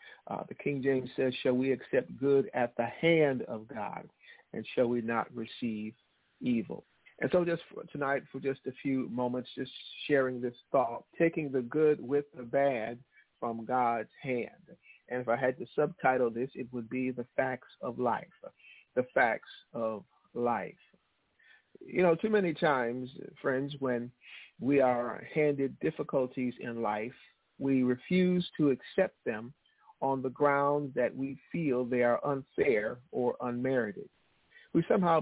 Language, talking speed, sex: English, 155 wpm, male